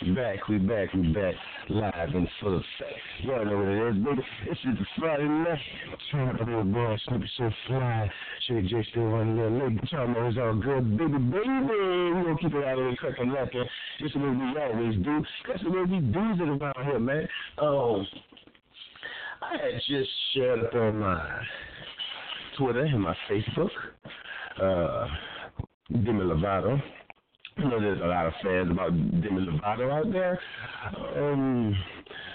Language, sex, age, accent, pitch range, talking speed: English, male, 60-79, American, 100-140 Hz, 180 wpm